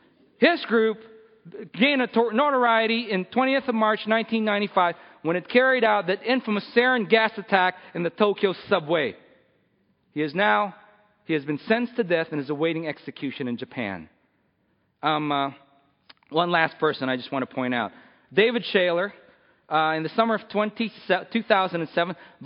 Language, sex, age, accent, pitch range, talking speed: English, male, 40-59, American, 190-250 Hz, 155 wpm